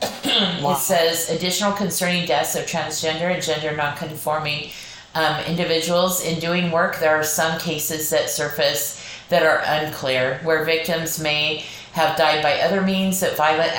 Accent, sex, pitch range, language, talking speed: American, female, 150-175 Hz, English, 145 wpm